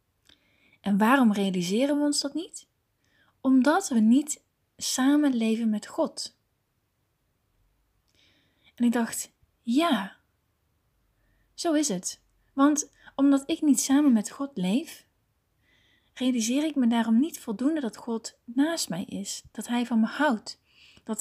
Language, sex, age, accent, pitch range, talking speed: Dutch, female, 30-49, Dutch, 215-275 Hz, 130 wpm